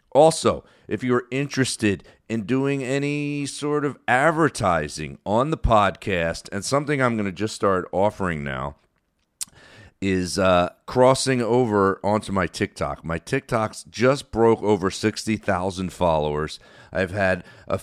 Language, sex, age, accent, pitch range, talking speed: English, male, 40-59, American, 85-115 Hz, 130 wpm